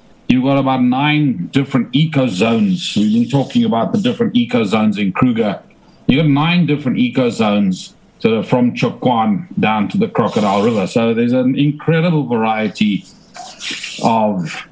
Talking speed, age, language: 135 wpm, 50-69, English